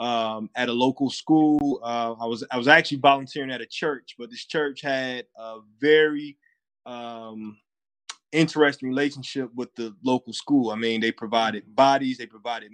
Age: 20-39